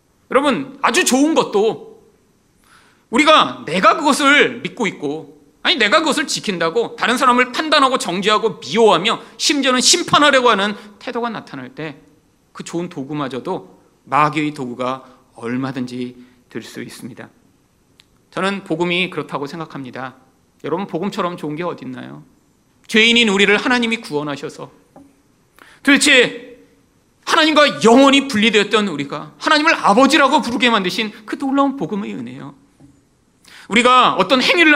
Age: 40-59